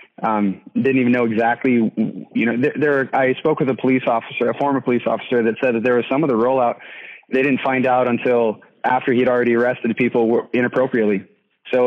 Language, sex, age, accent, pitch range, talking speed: English, male, 20-39, American, 115-130 Hz, 200 wpm